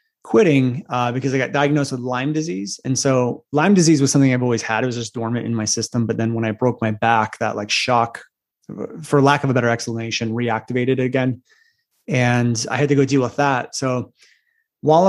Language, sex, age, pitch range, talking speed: English, male, 30-49, 120-145 Hz, 210 wpm